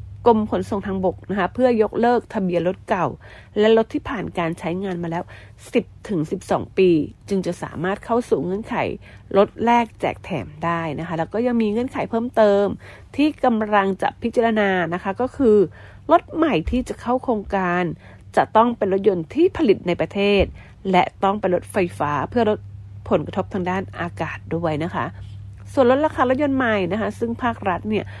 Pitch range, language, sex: 170-225 Hz, English, female